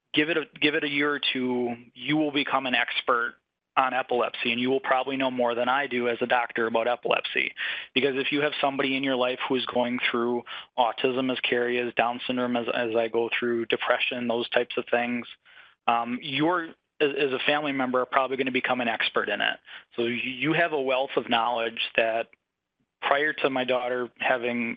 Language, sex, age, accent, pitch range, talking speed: English, male, 20-39, American, 120-135 Hz, 210 wpm